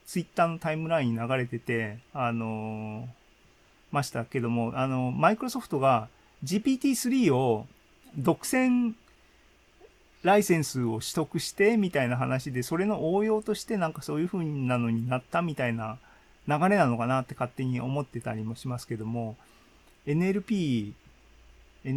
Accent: native